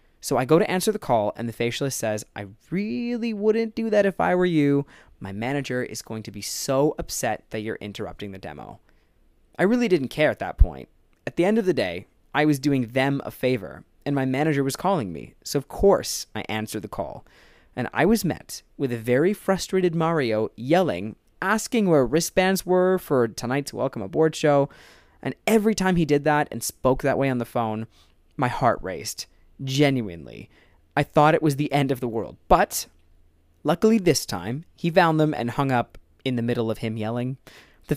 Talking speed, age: 200 wpm, 20-39